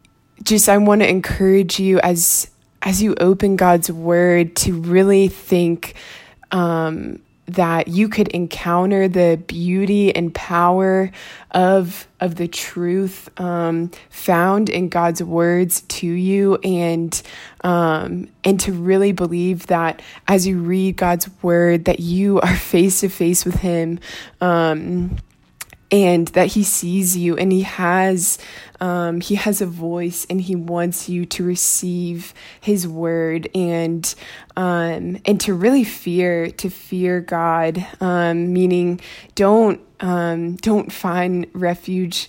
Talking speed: 130 wpm